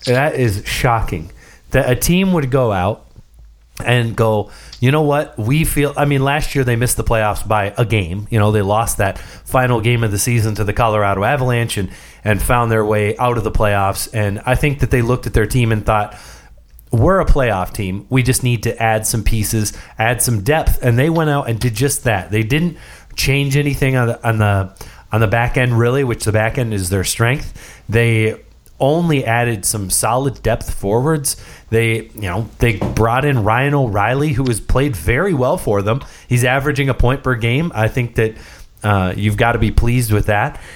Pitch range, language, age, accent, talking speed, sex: 105-130 Hz, English, 30-49, American, 205 wpm, male